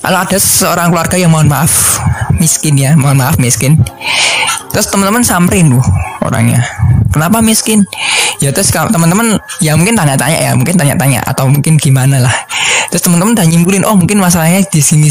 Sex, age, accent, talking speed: male, 10-29, native, 160 wpm